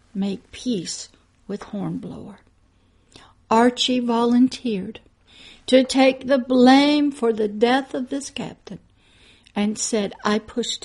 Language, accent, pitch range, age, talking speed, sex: English, American, 220-275 Hz, 60-79, 110 wpm, female